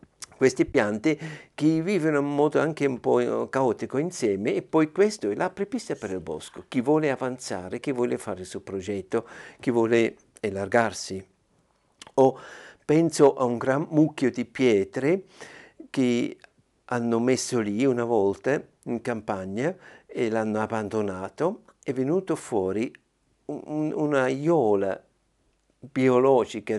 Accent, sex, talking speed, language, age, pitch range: native, male, 125 wpm, Italian, 60-79, 110-150 Hz